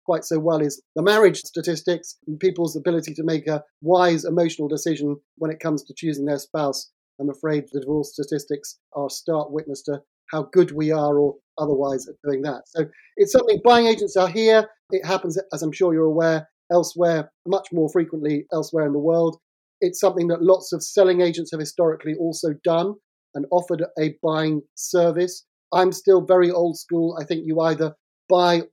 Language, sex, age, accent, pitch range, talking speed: English, male, 30-49, British, 155-175 Hz, 185 wpm